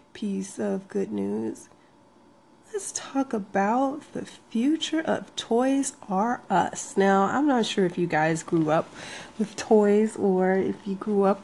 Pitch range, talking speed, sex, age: 195-270 Hz, 150 wpm, female, 30-49